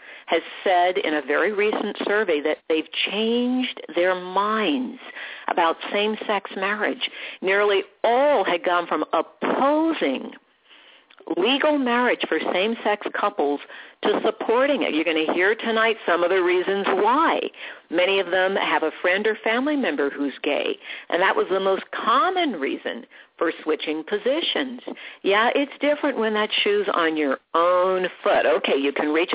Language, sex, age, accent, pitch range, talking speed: English, female, 50-69, American, 170-260 Hz, 150 wpm